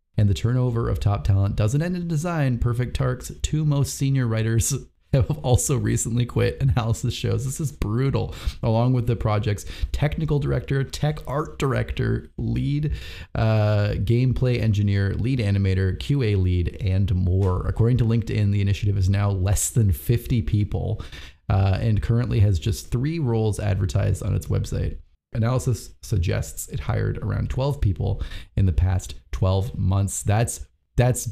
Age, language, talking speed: 30-49, English, 155 wpm